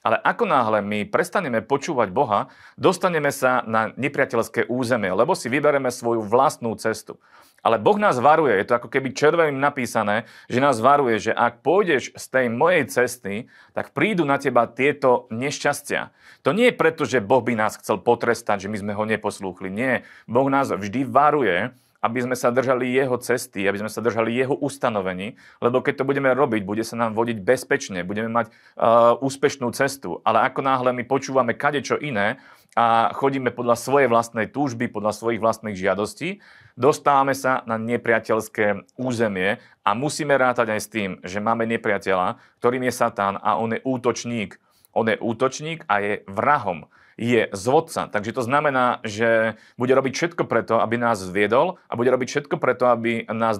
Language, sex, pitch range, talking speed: Slovak, male, 110-135 Hz, 175 wpm